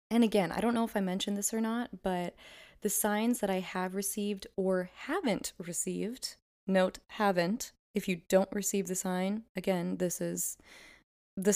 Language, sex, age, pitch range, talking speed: English, female, 20-39, 175-210 Hz, 170 wpm